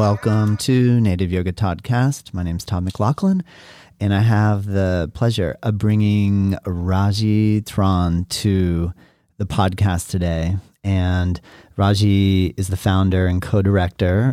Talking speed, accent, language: 125 wpm, American, English